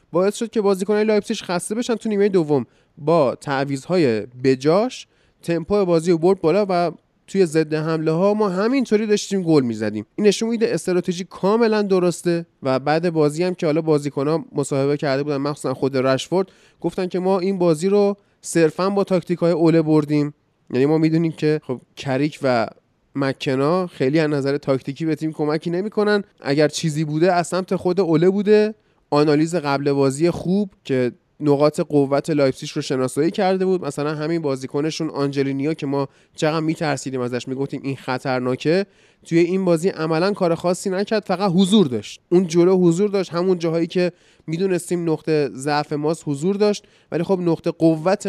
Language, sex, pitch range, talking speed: Persian, male, 150-190 Hz, 165 wpm